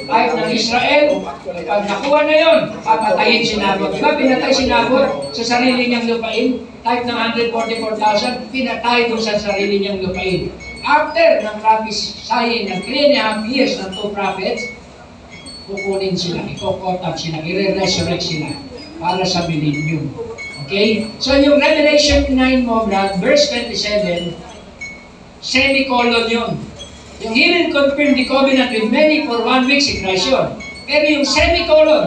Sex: male